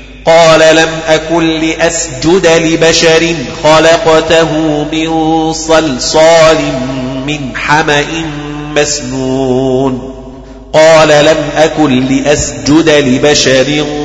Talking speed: 70 wpm